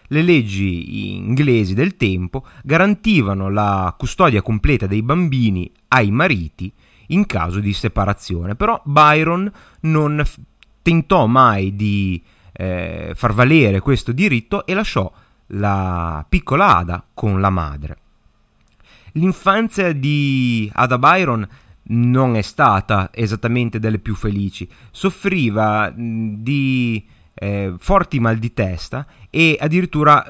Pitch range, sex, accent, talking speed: 100-135 Hz, male, native, 110 wpm